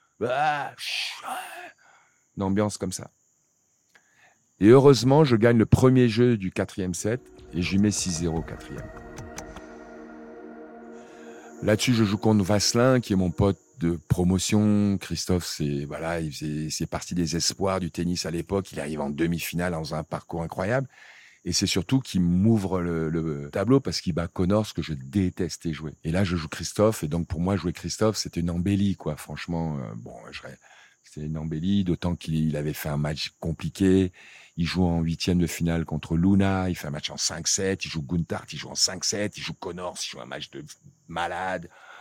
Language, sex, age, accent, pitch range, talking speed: French, male, 40-59, French, 80-100 Hz, 185 wpm